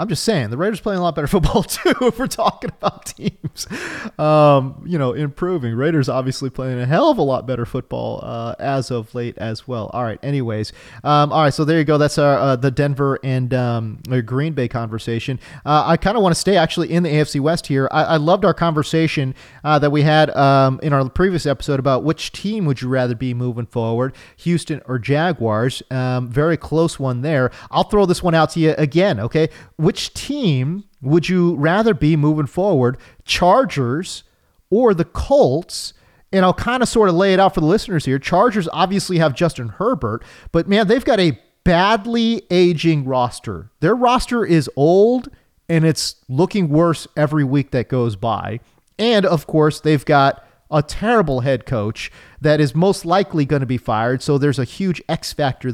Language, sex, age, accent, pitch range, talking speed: English, male, 30-49, American, 130-175 Hz, 195 wpm